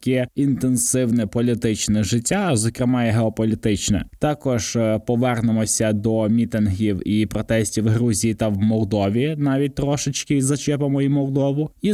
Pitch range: 115-140 Hz